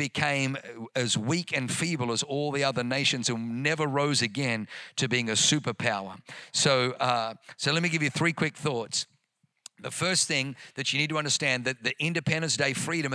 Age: 50-69